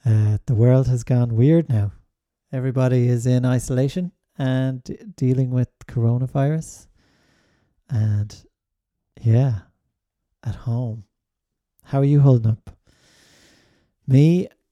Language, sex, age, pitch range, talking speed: English, male, 30-49, 120-145 Hz, 100 wpm